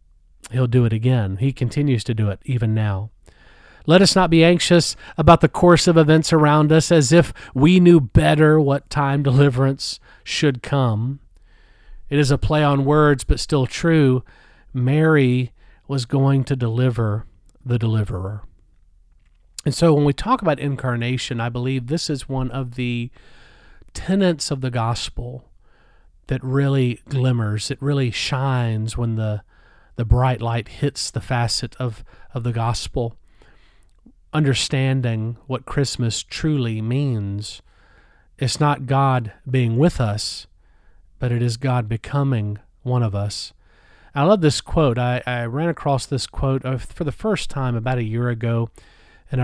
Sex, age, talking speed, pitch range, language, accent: male, 40-59, 150 wpm, 115-140 Hz, English, American